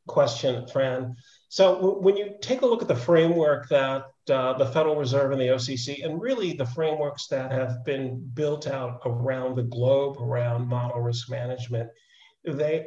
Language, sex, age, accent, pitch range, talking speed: English, male, 40-59, American, 125-165 Hz, 170 wpm